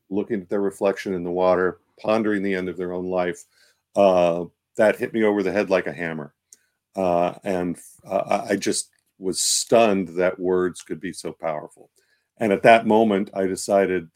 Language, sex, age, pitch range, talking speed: English, male, 50-69, 90-105 Hz, 180 wpm